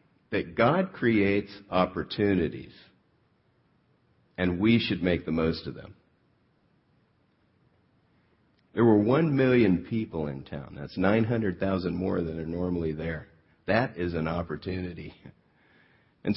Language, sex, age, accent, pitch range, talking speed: English, male, 50-69, American, 85-110 Hz, 115 wpm